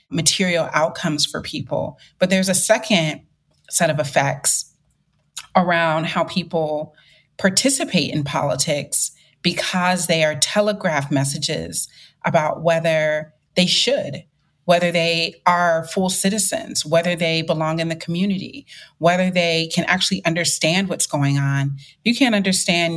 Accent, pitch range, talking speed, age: American, 155-185 Hz, 125 wpm, 30-49